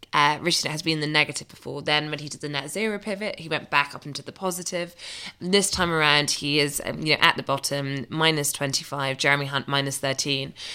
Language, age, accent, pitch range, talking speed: English, 20-39, British, 135-150 Hz, 225 wpm